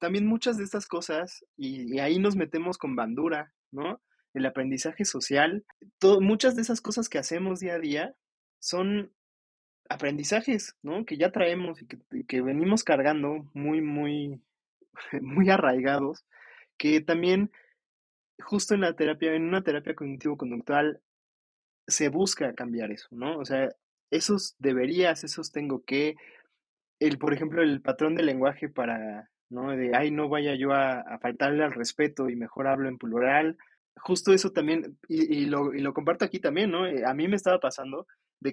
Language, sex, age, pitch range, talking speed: Spanish, male, 20-39, 140-185 Hz, 160 wpm